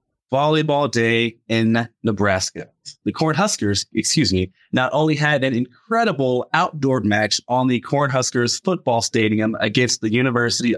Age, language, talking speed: 30-49, English, 130 wpm